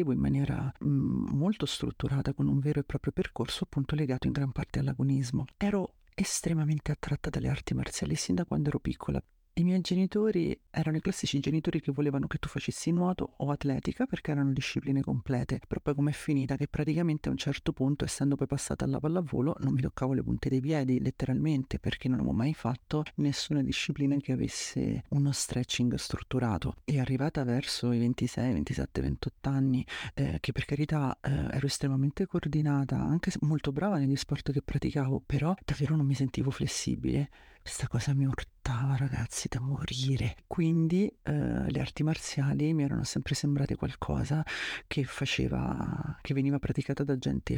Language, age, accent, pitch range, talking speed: Italian, 40-59, native, 130-150 Hz, 170 wpm